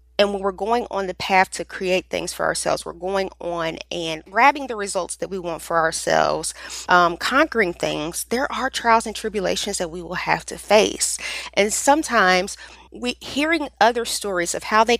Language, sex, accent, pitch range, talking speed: English, female, American, 180-240 Hz, 190 wpm